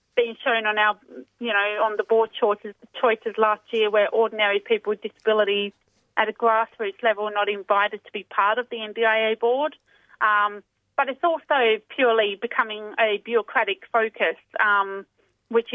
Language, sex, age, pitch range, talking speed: English, female, 30-49, 205-230 Hz, 165 wpm